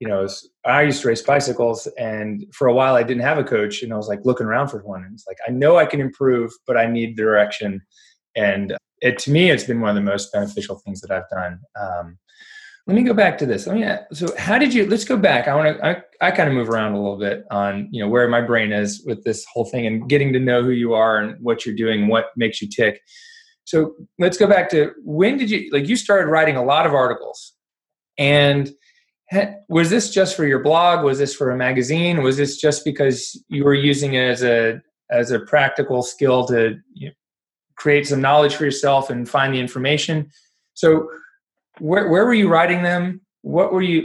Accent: American